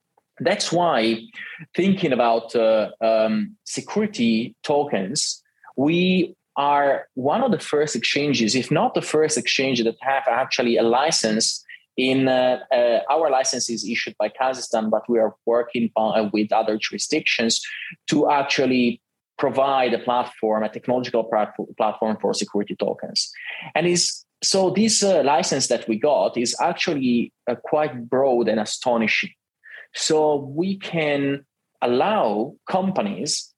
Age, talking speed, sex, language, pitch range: 20-39, 130 wpm, male, English, 115-145 Hz